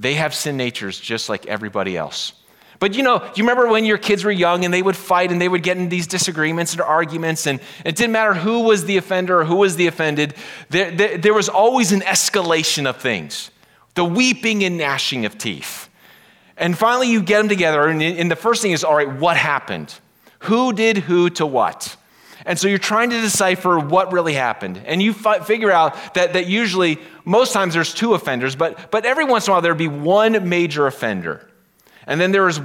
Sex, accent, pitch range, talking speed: male, American, 150-200 Hz, 220 wpm